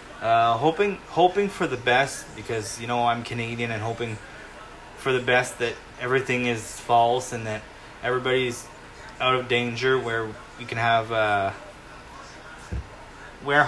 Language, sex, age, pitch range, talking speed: English, male, 20-39, 115-135 Hz, 140 wpm